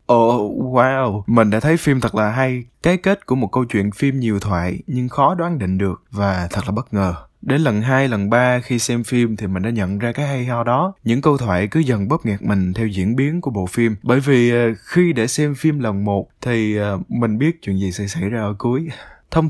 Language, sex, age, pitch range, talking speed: Vietnamese, male, 20-39, 100-140 Hz, 240 wpm